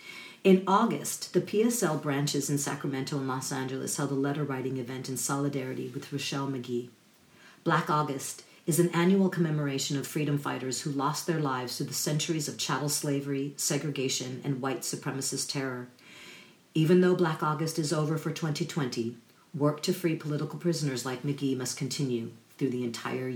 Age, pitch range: 50-69, 135-160 Hz